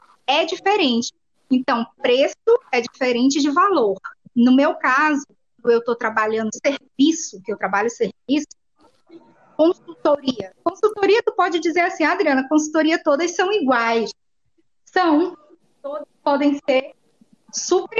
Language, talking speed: Portuguese, 115 wpm